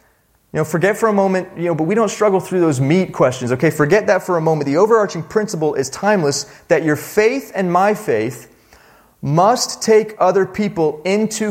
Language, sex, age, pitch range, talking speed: English, male, 30-49, 150-195 Hz, 200 wpm